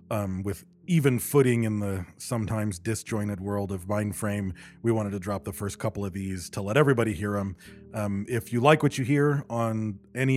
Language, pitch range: English, 100-120 Hz